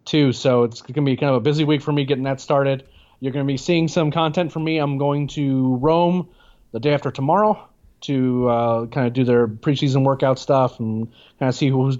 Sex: male